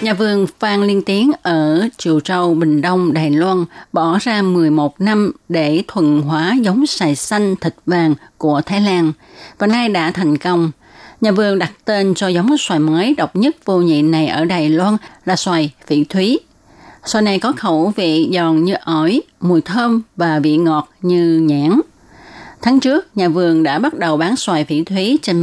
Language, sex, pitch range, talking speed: Vietnamese, female, 160-205 Hz, 185 wpm